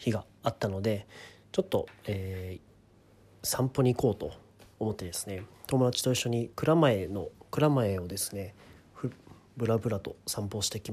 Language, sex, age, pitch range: Japanese, male, 40-59, 95-130 Hz